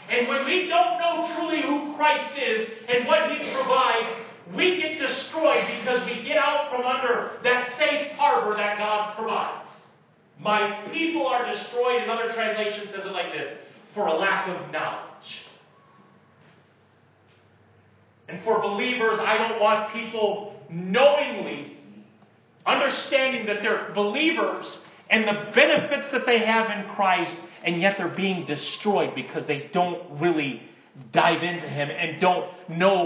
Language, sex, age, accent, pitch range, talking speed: English, male, 40-59, American, 155-245 Hz, 140 wpm